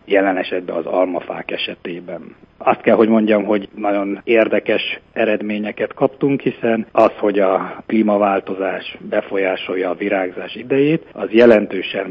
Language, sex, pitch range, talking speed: Hungarian, male, 100-120 Hz, 125 wpm